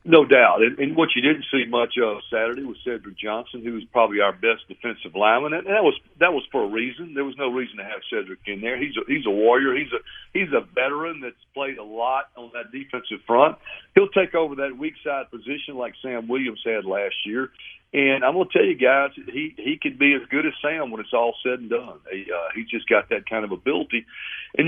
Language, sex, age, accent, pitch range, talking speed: English, male, 50-69, American, 115-165 Hz, 240 wpm